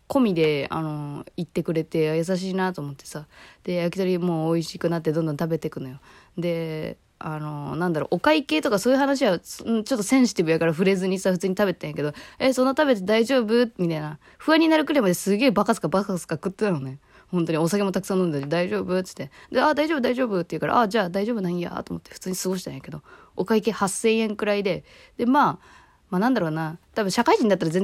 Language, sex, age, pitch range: Japanese, female, 20-39, 155-210 Hz